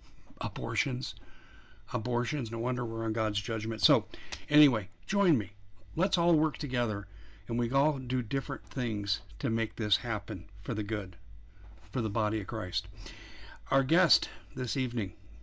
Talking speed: 150 wpm